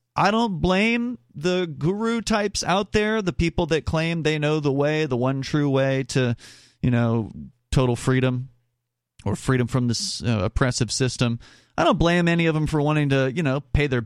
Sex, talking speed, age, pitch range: male, 190 wpm, 30-49, 120-165 Hz